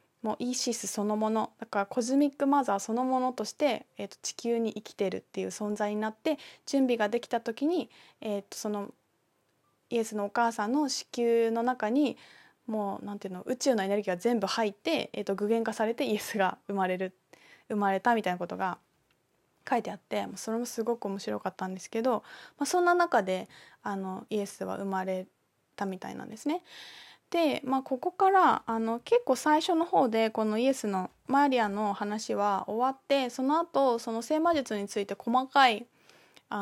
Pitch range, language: 200-260 Hz, Japanese